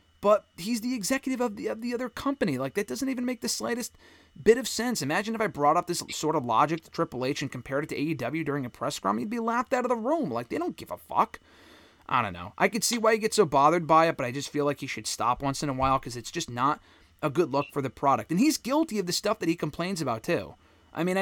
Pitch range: 140-225 Hz